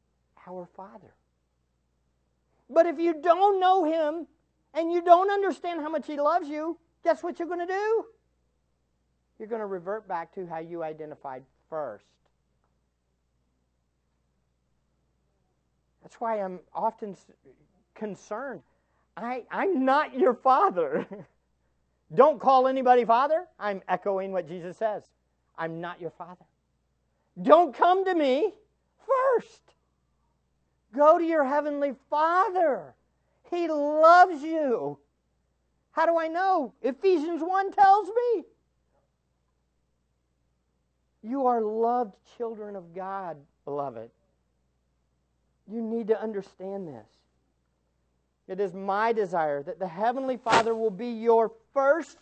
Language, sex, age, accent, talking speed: English, male, 50-69, American, 115 wpm